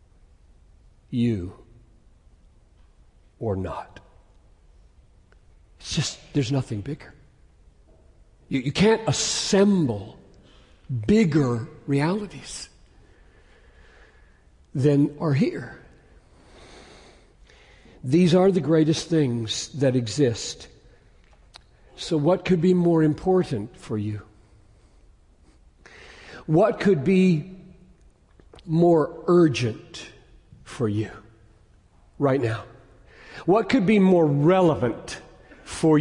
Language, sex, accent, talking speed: English, male, American, 80 wpm